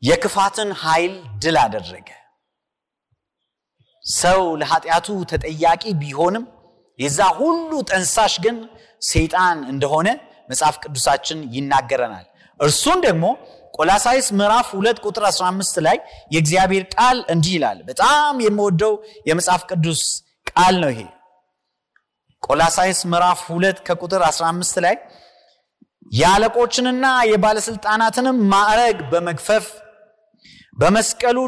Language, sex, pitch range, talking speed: Amharic, male, 165-235 Hz, 85 wpm